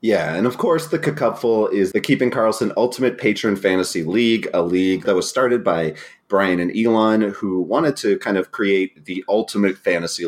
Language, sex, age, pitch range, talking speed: English, male, 30-49, 90-125 Hz, 185 wpm